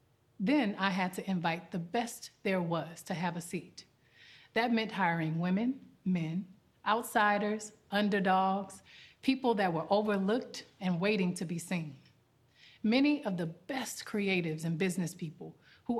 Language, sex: English, female